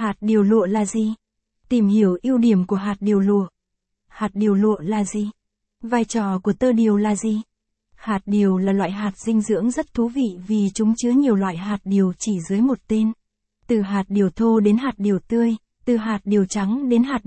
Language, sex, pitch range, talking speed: Vietnamese, female, 200-230 Hz, 210 wpm